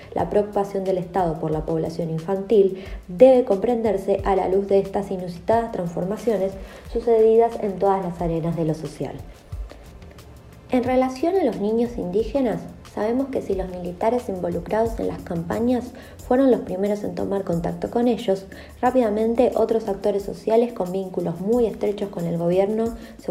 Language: Spanish